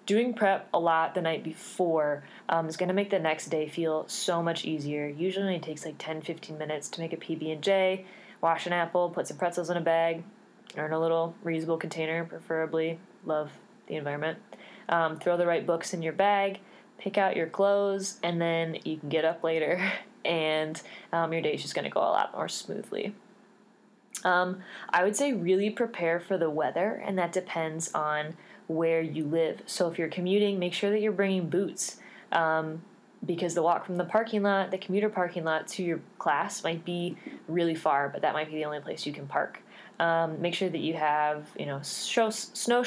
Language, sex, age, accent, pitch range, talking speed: English, female, 20-39, American, 160-195 Hz, 205 wpm